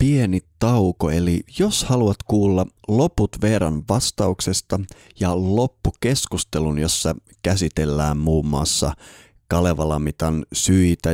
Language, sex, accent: Finnish, male, native